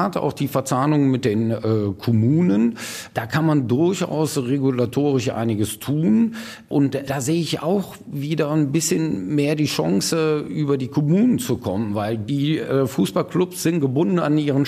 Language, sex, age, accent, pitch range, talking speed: German, male, 50-69, German, 120-150 Hz, 160 wpm